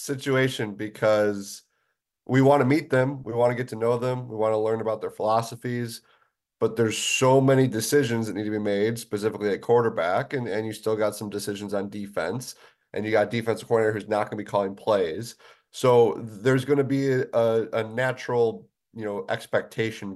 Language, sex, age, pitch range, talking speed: English, male, 30-49, 105-135 Hz, 195 wpm